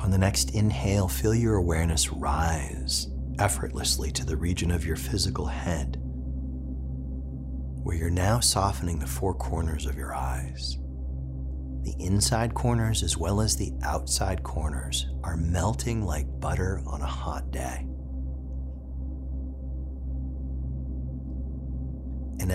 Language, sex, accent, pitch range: English, male, American, 65-85 Hz